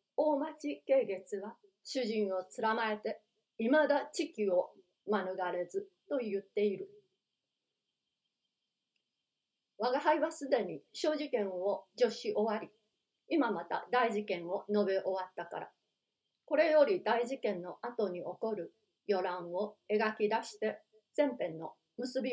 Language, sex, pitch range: Japanese, female, 200-270 Hz